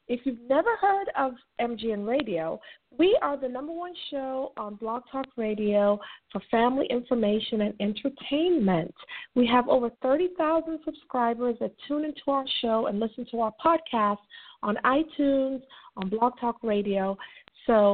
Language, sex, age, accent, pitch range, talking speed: English, female, 40-59, American, 215-275 Hz, 145 wpm